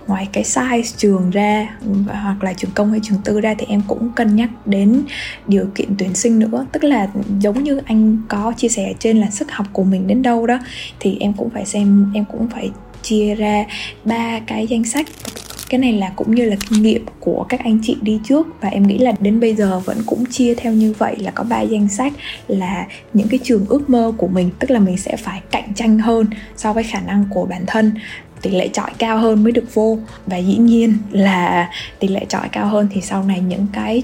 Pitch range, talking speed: 195-230 Hz, 235 wpm